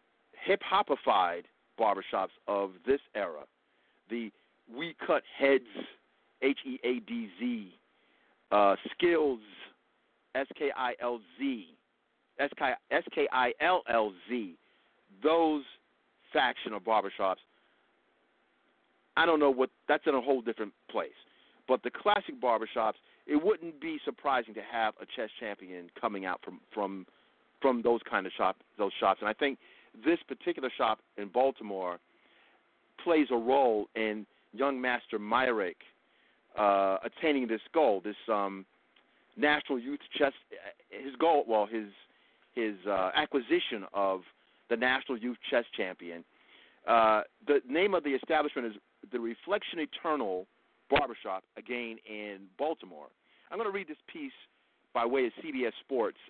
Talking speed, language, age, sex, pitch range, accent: 135 wpm, English, 50-69, male, 105-155 Hz, American